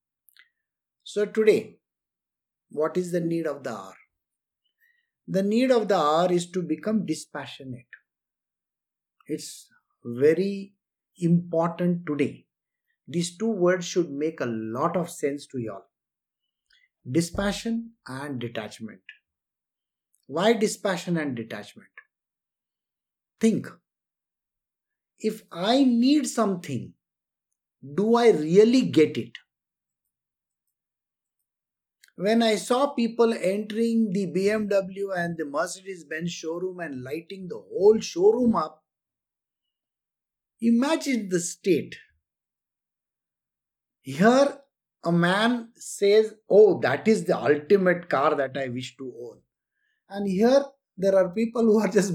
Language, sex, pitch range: English, male, 150-220 Hz